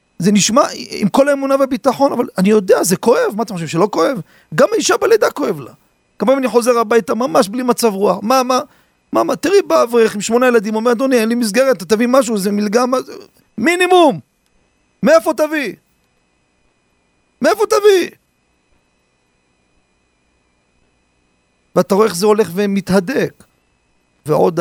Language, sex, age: Hebrew, male, 40-59